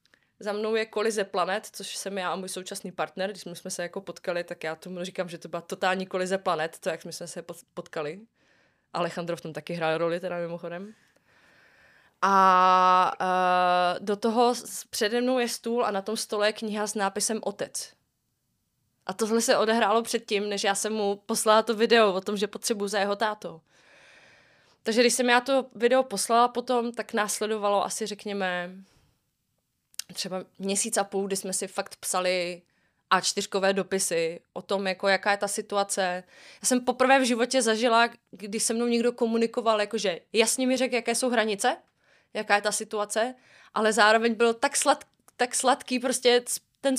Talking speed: 175 wpm